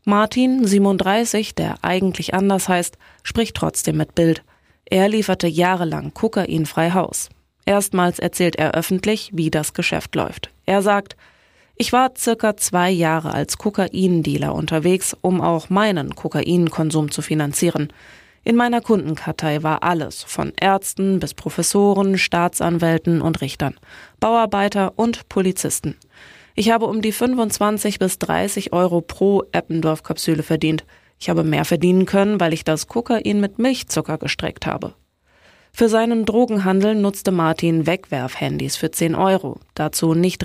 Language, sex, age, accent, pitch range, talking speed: German, female, 20-39, German, 160-205 Hz, 130 wpm